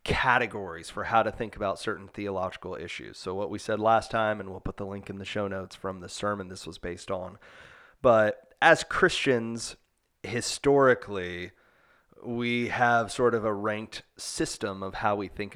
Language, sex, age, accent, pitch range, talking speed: English, male, 30-49, American, 95-120 Hz, 175 wpm